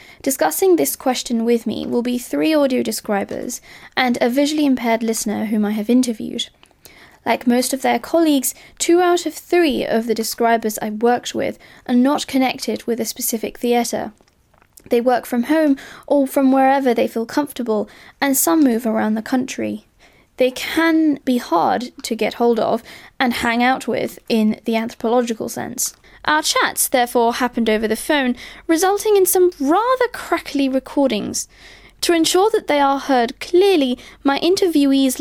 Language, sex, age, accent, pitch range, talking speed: English, female, 20-39, British, 225-280 Hz, 160 wpm